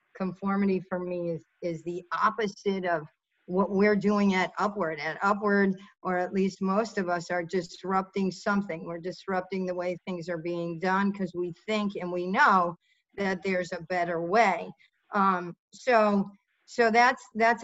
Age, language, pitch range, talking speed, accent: 50-69, English, 175-200 Hz, 165 wpm, American